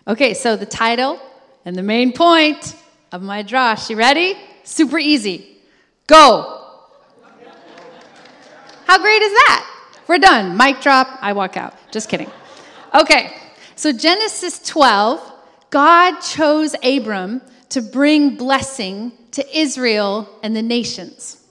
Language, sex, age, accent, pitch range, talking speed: English, female, 30-49, American, 210-280 Hz, 125 wpm